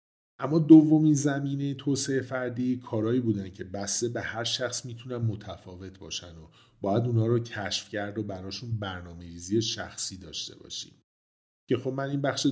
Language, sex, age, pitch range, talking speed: Persian, male, 50-69, 100-125 Hz, 160 wpm